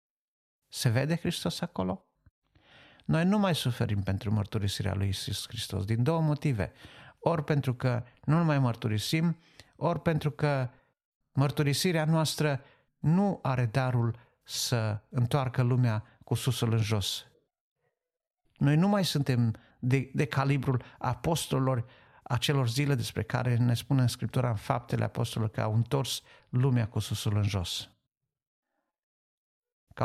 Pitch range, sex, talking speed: 115-145 Hz, male, 130 wpm